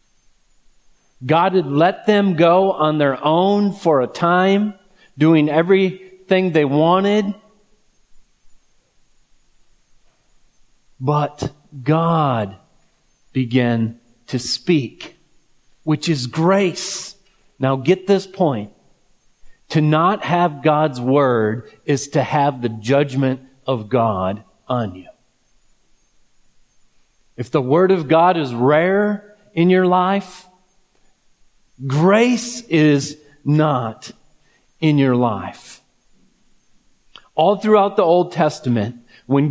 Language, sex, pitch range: English, male, 135-180 Hz